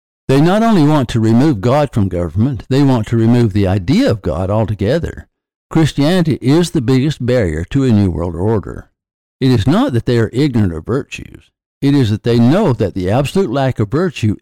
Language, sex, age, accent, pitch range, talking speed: English, male, 60-79, American, 100-135 Hz, 200 wpm